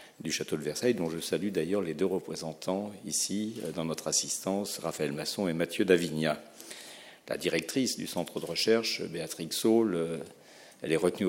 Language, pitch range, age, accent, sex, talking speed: French, 80-115 Hz, 50-69, French, male, 165 wpm